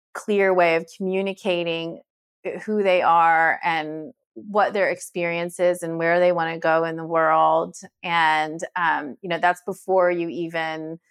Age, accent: 30-49, American